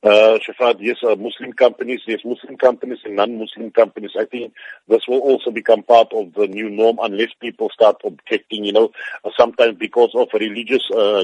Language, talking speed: English, 185 wpm